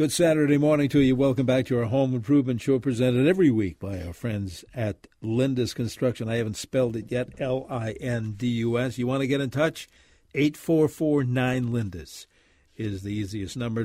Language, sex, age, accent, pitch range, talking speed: English, male, 50-69, American, 110-135 Hz, 180 wpm